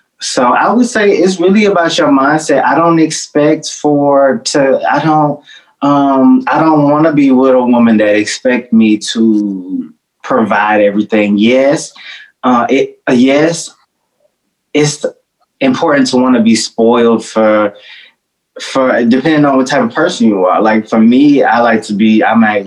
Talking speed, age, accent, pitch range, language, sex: 165 wpm, 20-39, American, 105-140 Hz, English, male